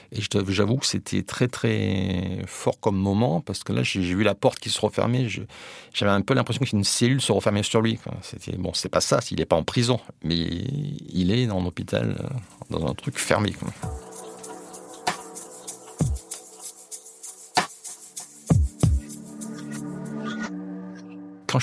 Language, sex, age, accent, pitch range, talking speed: French, male, 50-69, French, 95-120 Hz, 140 wpm